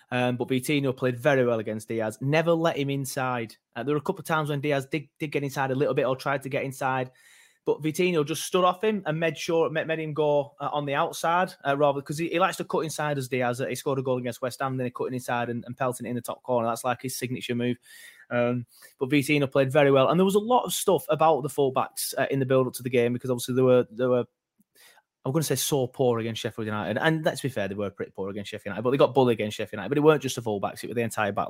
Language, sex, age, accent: English, male, 20-39, British